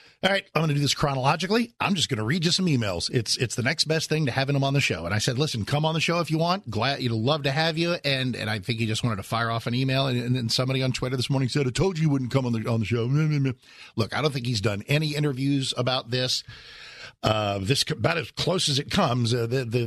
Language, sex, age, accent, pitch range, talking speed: English, male, 50-69, American, 115-155 Hz, 295 wpm